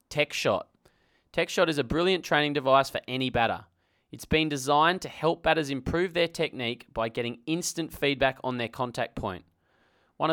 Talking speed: 165 wpm